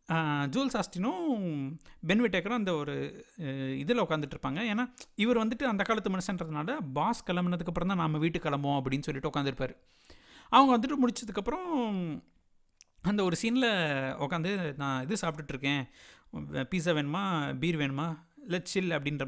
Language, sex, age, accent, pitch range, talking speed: Tamil, male, 60-79, native, 150-215 Hz, 125 wpm